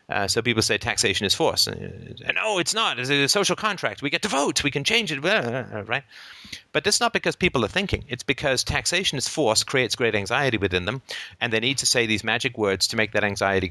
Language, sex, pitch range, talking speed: English, male, 110-140 Hz, 235 wpm